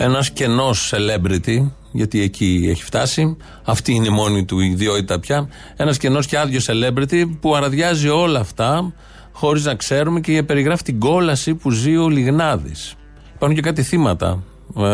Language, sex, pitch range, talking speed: Greek, male, 115-155 Hz, 155 wpm